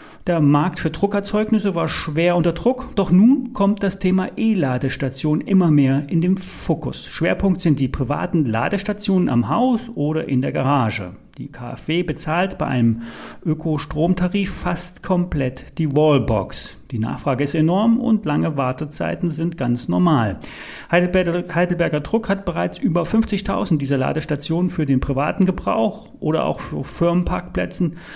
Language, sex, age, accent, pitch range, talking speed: German, male, 40-59, German, 135-195 Hz, 145 wpm